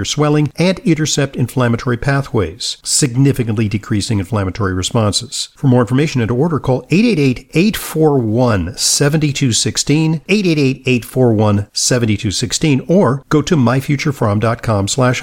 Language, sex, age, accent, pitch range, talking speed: English, male, 50-69, American, 105-135 Hz, 90 wpm